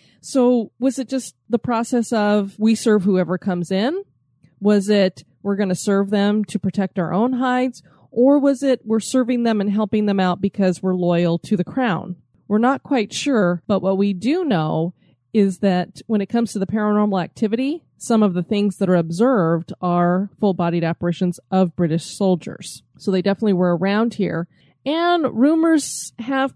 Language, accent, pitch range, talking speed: English, American, 185-240 Hz, 180 wpm